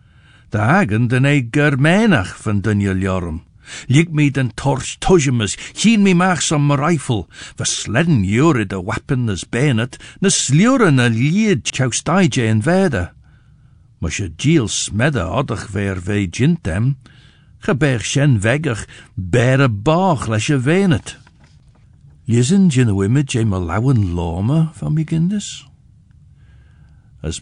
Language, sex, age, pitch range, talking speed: English, male, 60-79, 100-145 Hz, 110 wpm